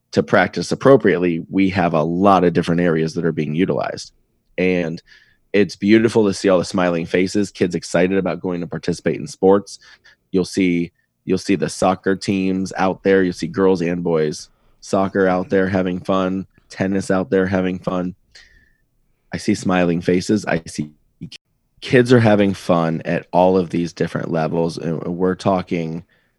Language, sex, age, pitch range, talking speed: English, male, 20-39, 90-100 Hz, 170 wpm